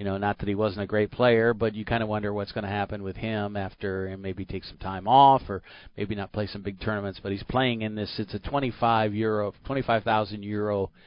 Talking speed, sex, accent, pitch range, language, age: 250 wpm, male, American, 95-115 Hz, English, 40-59